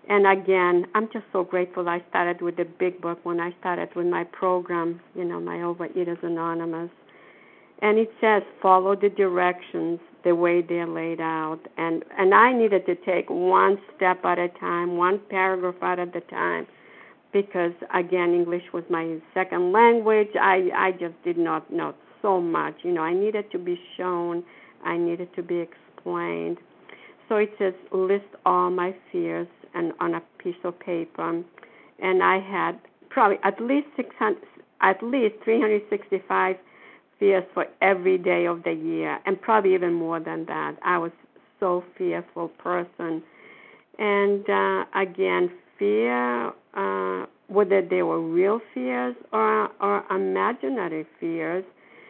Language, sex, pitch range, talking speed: English, female, 170-195 Hz, 155 wpm